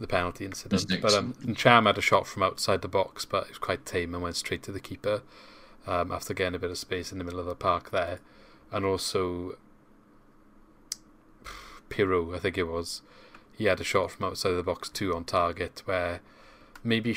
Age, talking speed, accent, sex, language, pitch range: 30-49, 210 wpm, British, male, English, 90-105 Hz